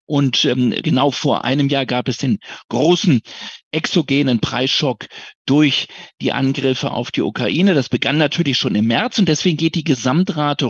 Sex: male